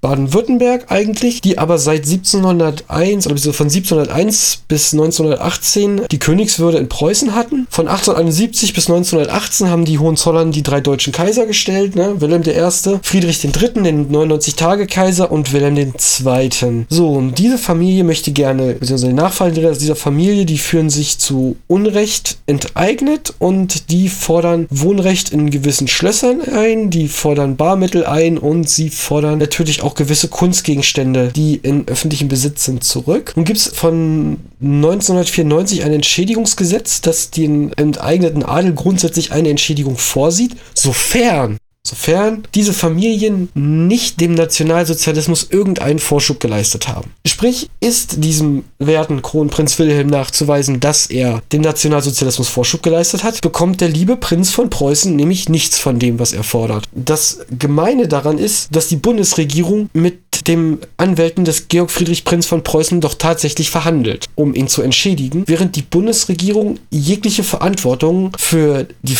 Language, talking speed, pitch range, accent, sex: German, 145 wpm, 145-185 Hz, German, male